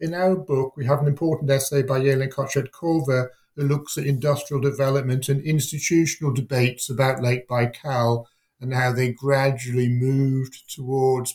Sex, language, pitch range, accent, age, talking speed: male, English, 125-155 Hz, British, 50-69, 150 wpm